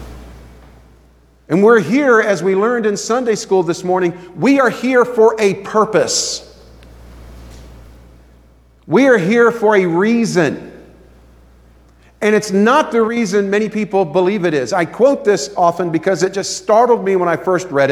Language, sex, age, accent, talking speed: English, male, 50-69, American, 155 wpm